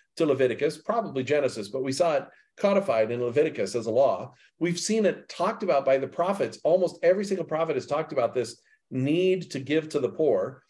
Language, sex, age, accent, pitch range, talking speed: English, male, 50-69, American, 135-185 Hz, 200 wpm